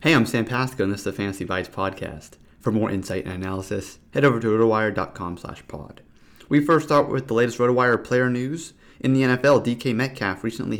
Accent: American